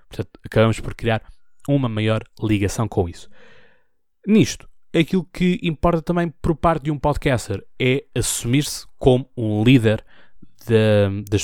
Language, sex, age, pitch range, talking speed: Portuguese, male, 20-39, 100-130 Hz, 125 wpm